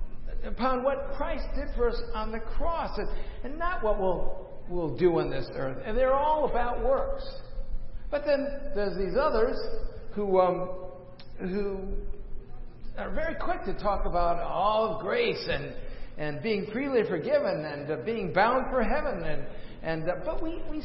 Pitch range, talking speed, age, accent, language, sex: 155-255 Hz, 165 wpm, 50-69, American, English, male